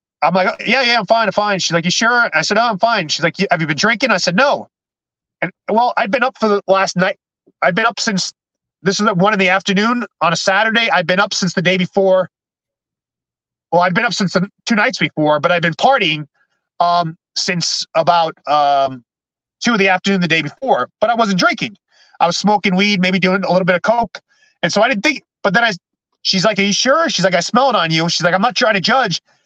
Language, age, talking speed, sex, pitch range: English, 30-49, 255 wpm, male, 165-205 Hz